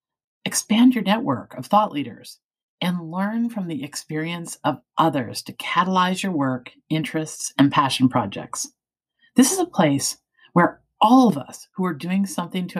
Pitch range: 145-215 Hz